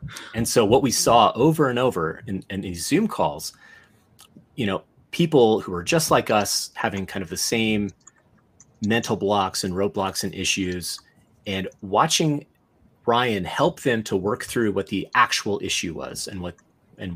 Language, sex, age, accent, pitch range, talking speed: English, male, 30-49, American, 95-135 Hz, 165 wpm